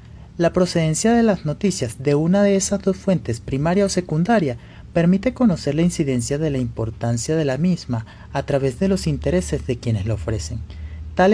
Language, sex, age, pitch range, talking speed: Spanish, male, 30-49, 115-175 Hz, 180 wpm